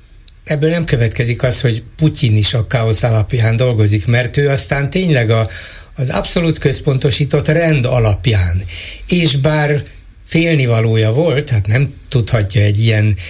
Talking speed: 130 wpm